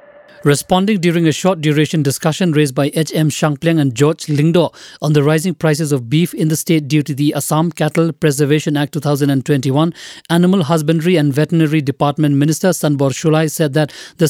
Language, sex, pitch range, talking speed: English, male, 150-180 Hz, 170 wpm